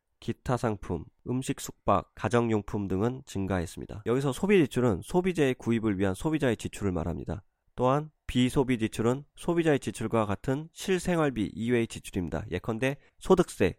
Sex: male